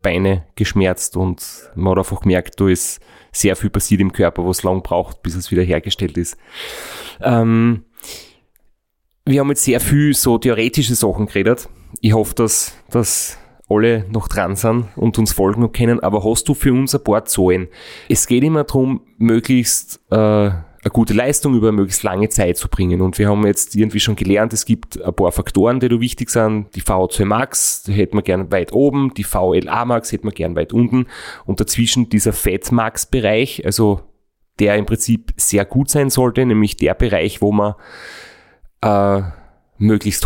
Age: 30-49